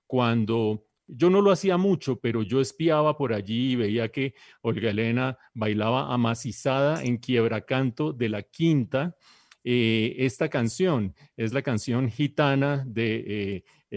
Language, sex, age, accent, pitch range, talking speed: English, male, 30-49, Colombian, 115-145 Hz, 140 wpm